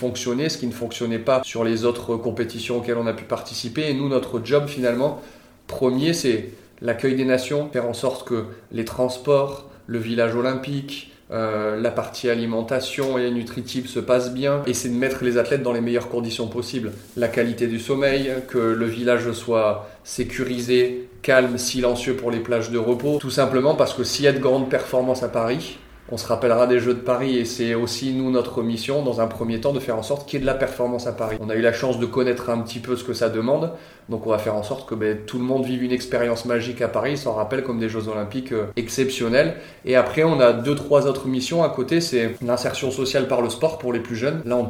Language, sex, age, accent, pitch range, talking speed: French, male, 20-39, French, 115-130 Hz, 230 wpm